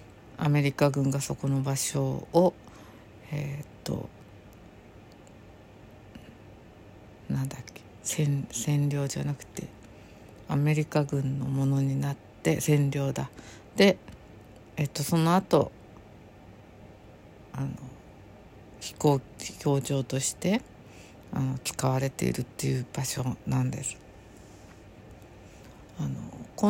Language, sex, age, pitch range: Japanese, female, 50-69, 105-155 Hz